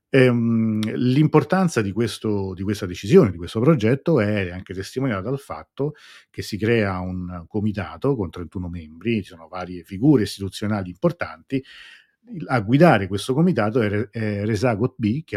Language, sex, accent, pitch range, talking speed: Italian, male, native, 95-115 Hz, 140 wpm